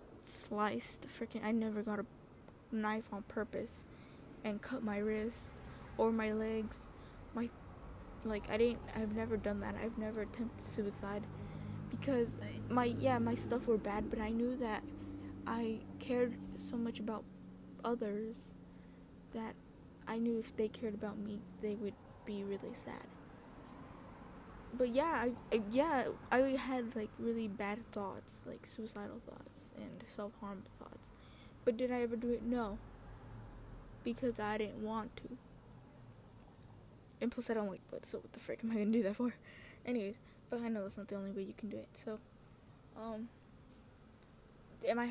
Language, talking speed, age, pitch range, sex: English, 160 wpm, 10-29, 200-235 Hz, female